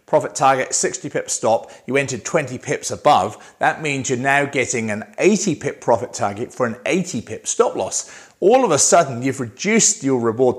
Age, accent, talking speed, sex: 40-59, British, 195 wpm, male